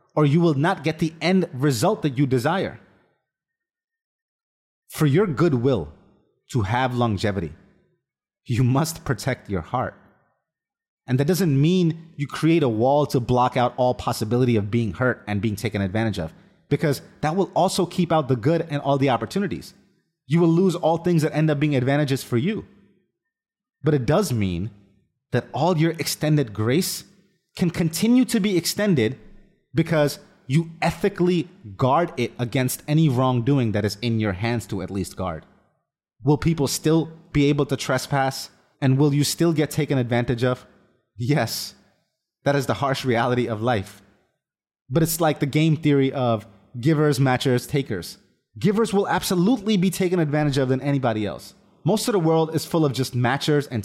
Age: 30-49